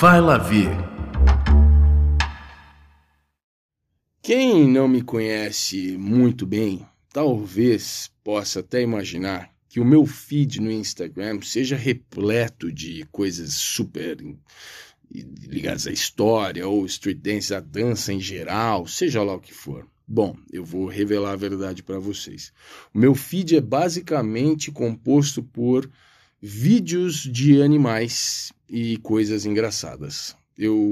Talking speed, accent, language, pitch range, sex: 120 wpm, Brazilian, Portuguese, 100-135 Hz, male